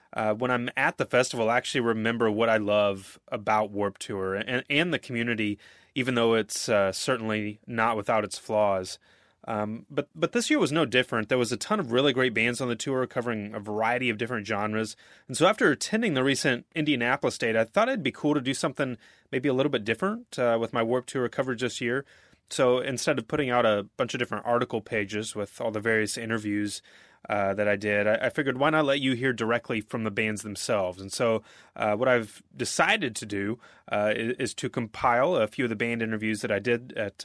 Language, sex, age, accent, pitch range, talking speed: English, male, 30-49, American, 105-130 Hz, 220 wpm